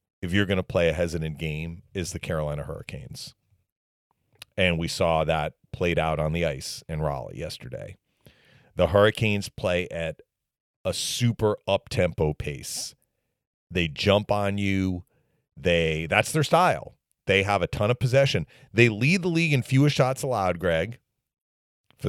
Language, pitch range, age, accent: English, 85-120 Hz, 40-59, American